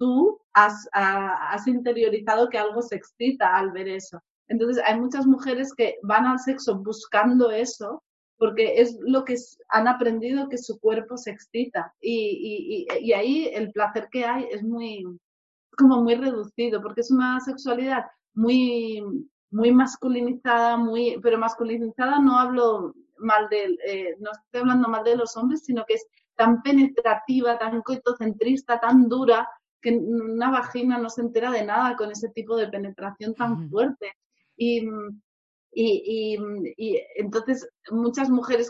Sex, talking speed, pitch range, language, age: female, 145 wpm, 215-255 Hz, Spanish, 30-49